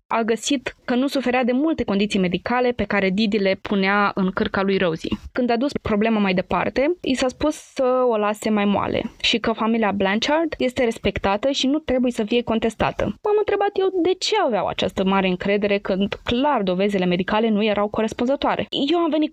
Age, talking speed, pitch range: 20-39, 195 wpm, 205-250 Hz